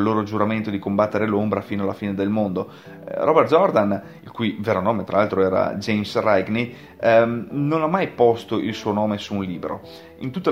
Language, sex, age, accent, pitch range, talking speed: Italian, male, 30-49, native, 100-115 Hz, 200 wpm